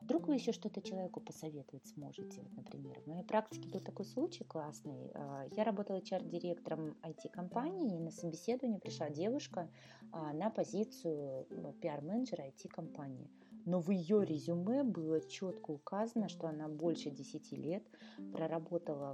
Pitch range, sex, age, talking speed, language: 155-195 Hz, female, 30-49, 135 wpm, Russian